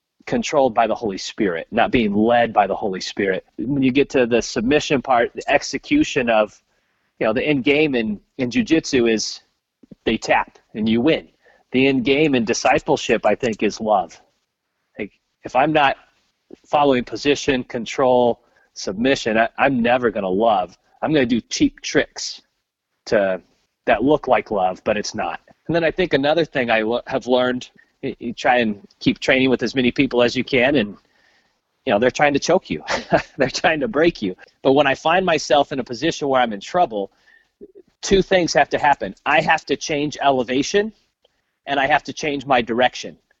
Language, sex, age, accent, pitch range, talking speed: English, male, 30-49, American, 120-160 Hz, 190 wpm